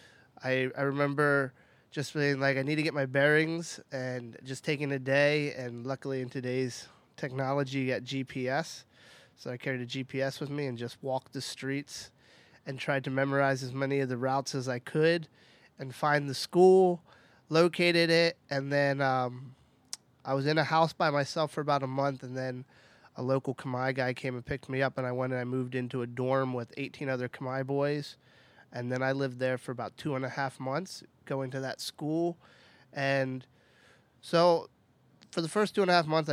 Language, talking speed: English, 200 wpm